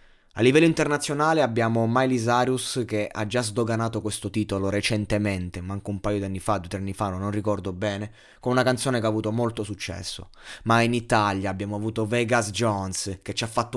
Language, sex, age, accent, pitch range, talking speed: Italian, male, 20-39, native, 105-120 Hz, 200 wpm